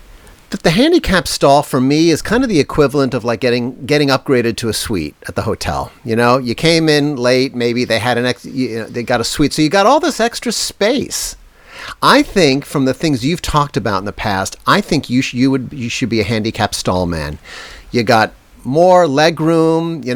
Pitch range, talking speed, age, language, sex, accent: 115-165 Hz, 225 wpm, 50-69, English, male, American